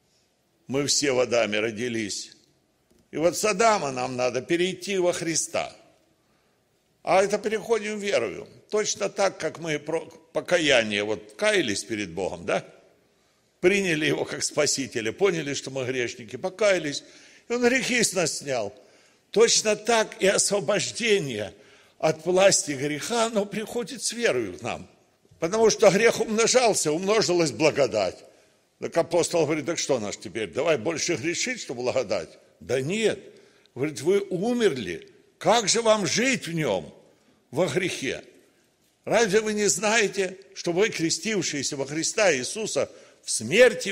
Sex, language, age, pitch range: male, Russian, 60-79, 155-215 Hz